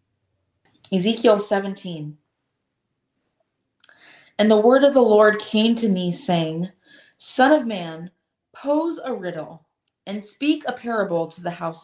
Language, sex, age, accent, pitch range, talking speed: English, female, 20-39, American, 165-220 Hz, 125 wpm